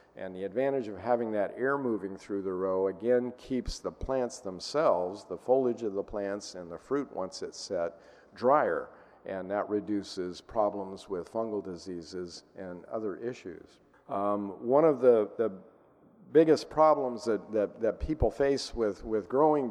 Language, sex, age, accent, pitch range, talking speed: English, male, 50-69, American, 95-125 Hz, 160 wpm